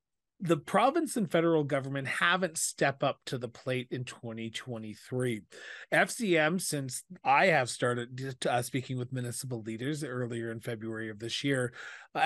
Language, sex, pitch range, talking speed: English, male, 120-150 Hz, 145 wpm